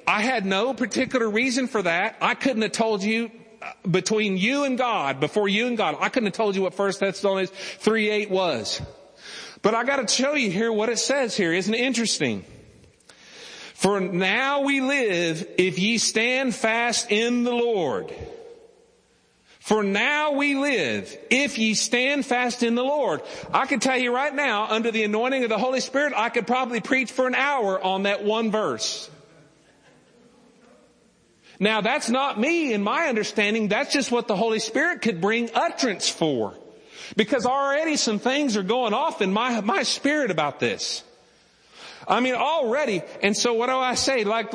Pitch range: 205-255 Hz